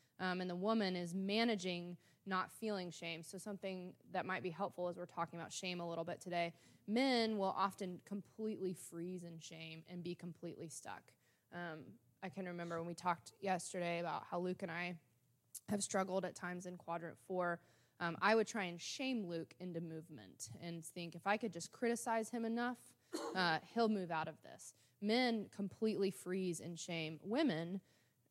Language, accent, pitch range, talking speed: English, American, 165-200 Hz, 180 wpm